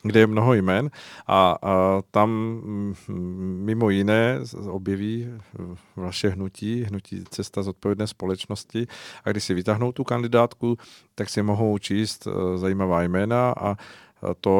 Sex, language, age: male, Czech, 40-59